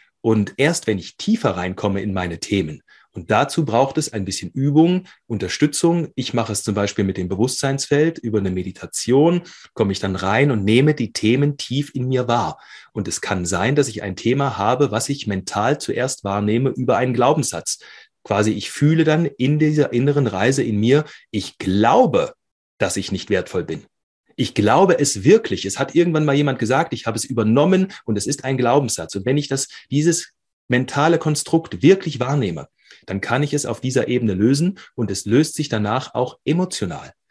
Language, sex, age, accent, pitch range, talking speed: German, male, 30-49, German, 105-145 Hz, 190 wpm